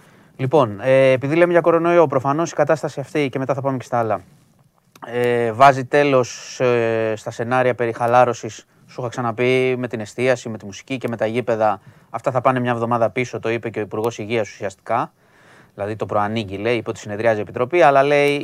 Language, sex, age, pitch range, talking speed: Greek, male, 20-39, 115-140 Hz, 200 wpm